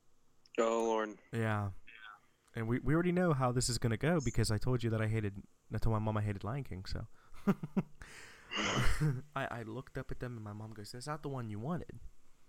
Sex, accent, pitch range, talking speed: male, American, 105-130 Hz, 215 wpm